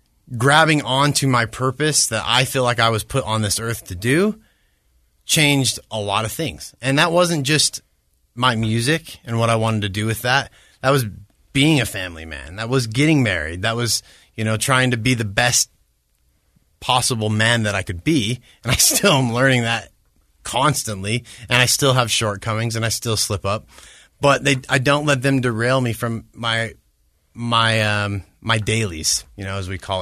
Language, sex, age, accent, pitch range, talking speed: English, male, 30-49, American, 105-125 Hz, 190 wpm